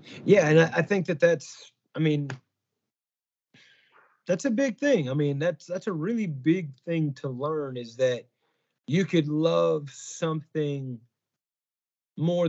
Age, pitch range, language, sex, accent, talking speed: 30-49, 135-185 Hz, English, male, American, 140 wpm